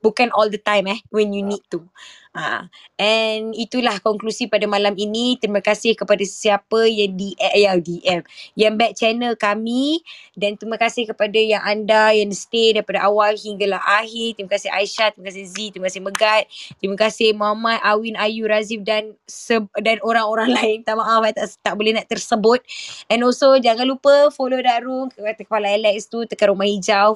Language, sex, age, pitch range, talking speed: Malay, female, 20-39, 205-235 Hz, 180 wpm